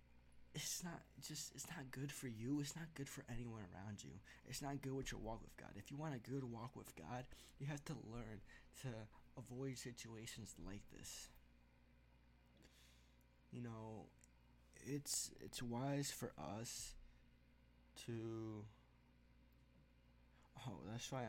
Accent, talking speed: American, 145 wpm